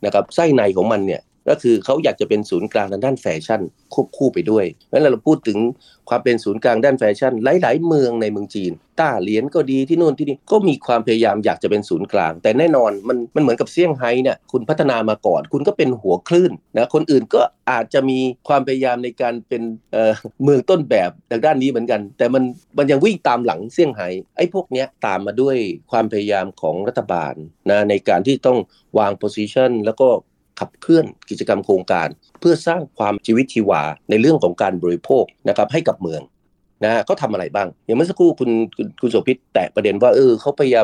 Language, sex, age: Thai, male, 30-49